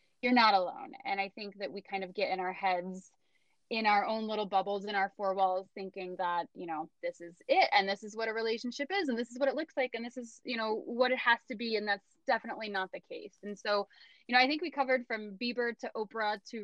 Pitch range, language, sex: 210-260 Hz, English, female